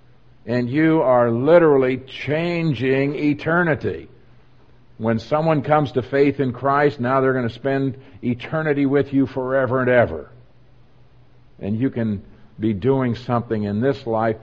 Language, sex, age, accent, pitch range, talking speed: English, male, 50-69, American, 115-135 Hz, 135 wpm